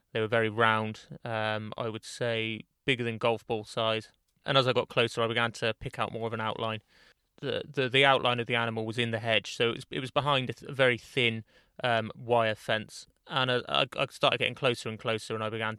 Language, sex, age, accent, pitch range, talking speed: English, male, 20-39, British, 110-125 Hz, 245 wpm